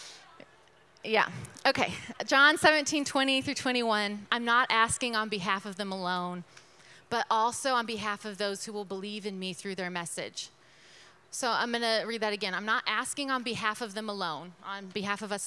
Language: English